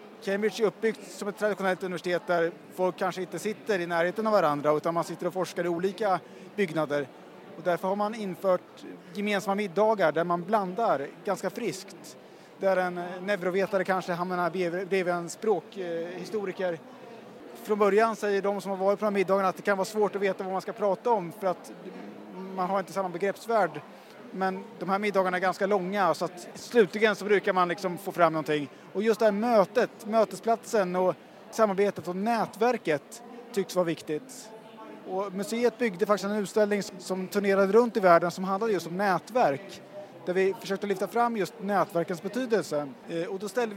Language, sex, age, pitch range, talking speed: Swedish, male, 30-49, 180-210 Hz, 180 wpm